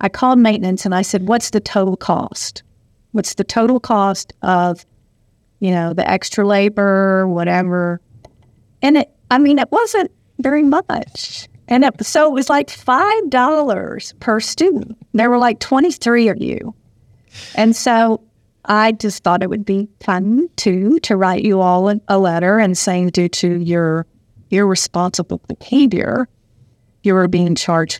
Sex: female